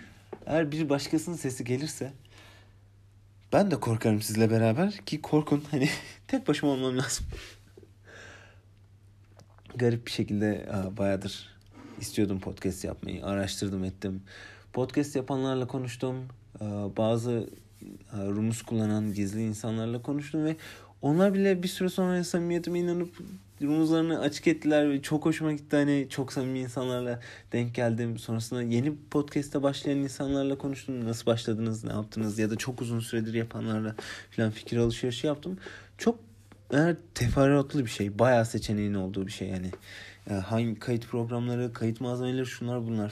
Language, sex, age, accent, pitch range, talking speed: Turkish, male, 40-59, native, 105-145 Hz, 130 wpm